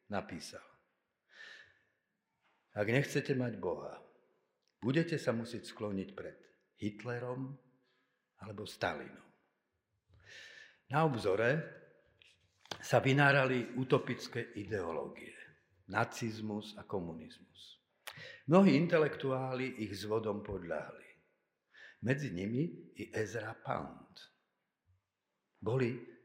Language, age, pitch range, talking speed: Slovak, 50-69, 105-135 Hz, 75 wpm